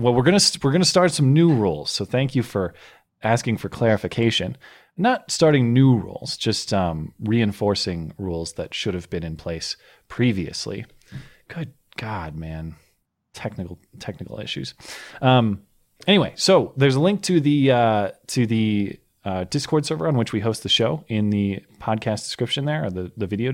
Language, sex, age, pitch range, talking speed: English, male, 30-49, 100-145 Hz, 170 wpm